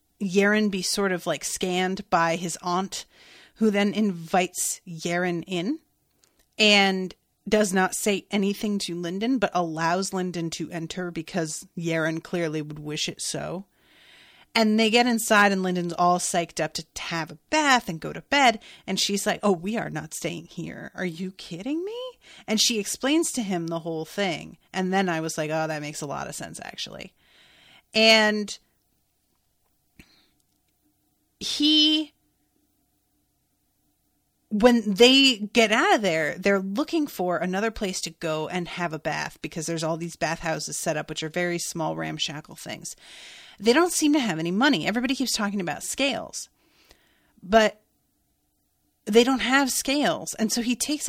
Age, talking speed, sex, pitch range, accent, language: 30-49, 160 wpm, female, 175-230 Hz, American, English